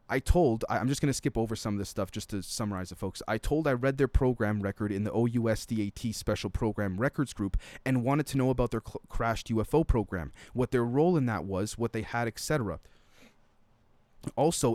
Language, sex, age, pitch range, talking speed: English, male, 30-49, 105-130 Hz, 215 wpm